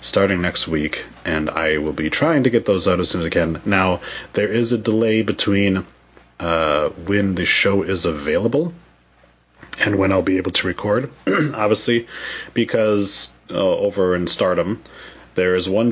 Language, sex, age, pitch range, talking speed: English, male, 30-49, 80-105 Hz, 170 wpm